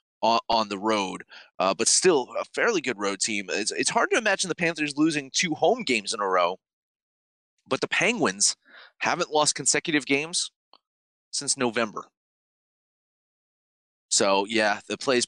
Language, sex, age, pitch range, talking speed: English, male, 20-39, 100-140 Hz, 150 wpm